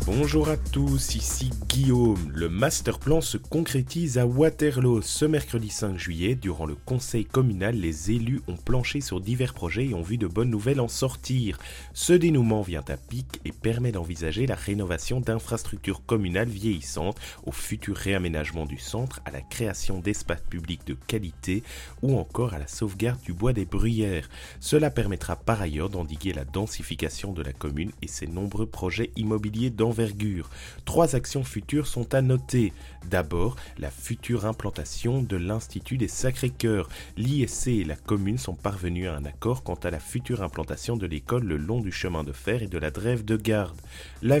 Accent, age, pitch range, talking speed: French, 30-49, 80-120 Hz, 175 wpm